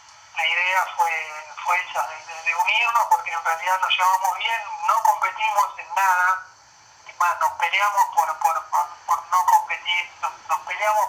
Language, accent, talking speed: Spanish, Argentinian, 160 wpm